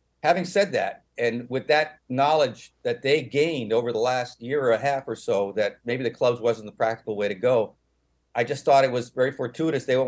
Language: English